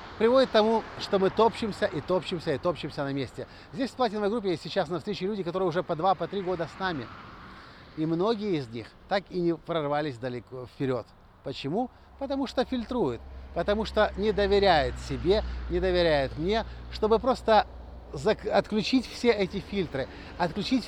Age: 50-69